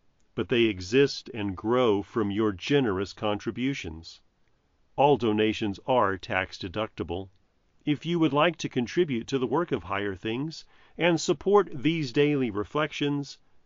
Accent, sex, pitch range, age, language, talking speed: American, male, 100-145 Hz, 40-59, English, 130 wpm